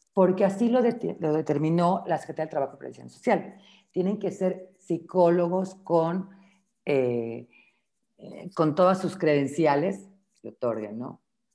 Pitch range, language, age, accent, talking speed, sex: 145-195 Hz, Spanish, 50-69, Mexican, 140 wpm, female